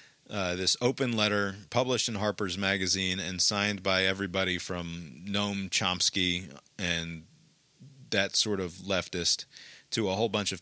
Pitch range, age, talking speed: 90-110 Hz, 30-49, 140 wpm